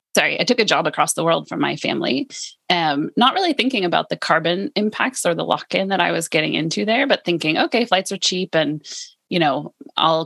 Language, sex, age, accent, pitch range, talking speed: English, female, 20-39, American, 145-195 Hz, 220 wpm